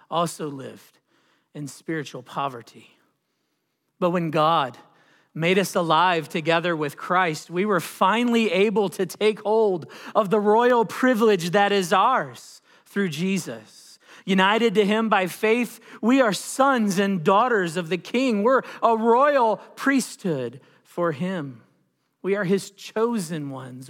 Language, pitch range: English, 160-210 Hz